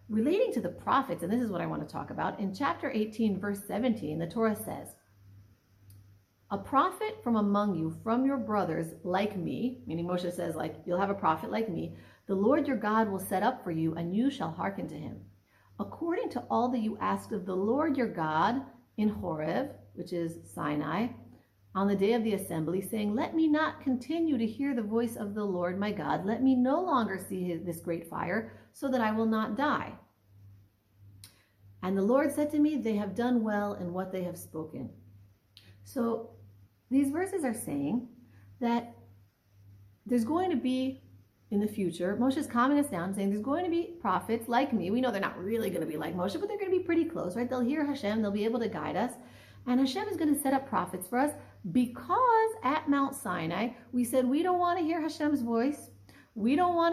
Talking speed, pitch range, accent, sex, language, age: 210 wpm, 170-260 Hz, American, female, English, 40-59